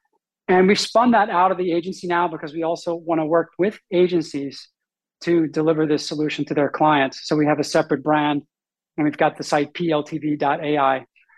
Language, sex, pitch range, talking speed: English, male, 155-180 Hz, 190 wpm